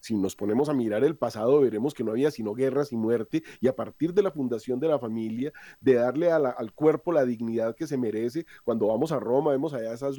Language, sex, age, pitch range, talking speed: Spanish, male, 40-59, 135-185 Hz, 235 wpm